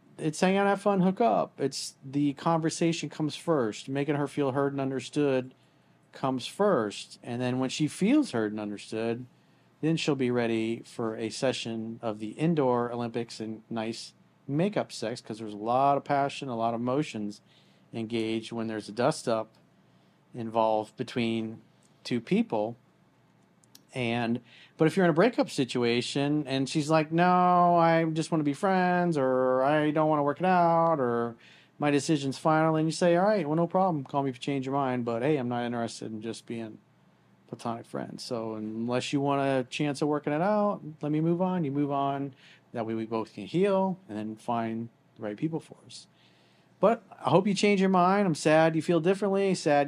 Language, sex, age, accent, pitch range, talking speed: English, male, 40-59, American, 115-160 Hz, 195 wpm